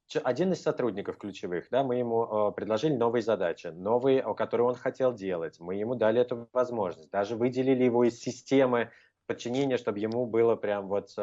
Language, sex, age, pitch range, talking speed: Russian, male, 20-39, 115-160 Hz, 170 wpm